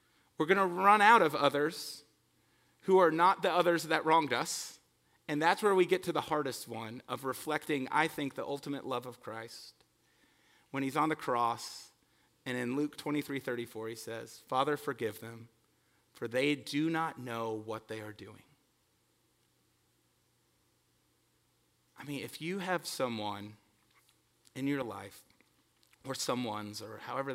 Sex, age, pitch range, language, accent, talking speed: male, 30-49, 115-160 Hz, English, American, 155 wpm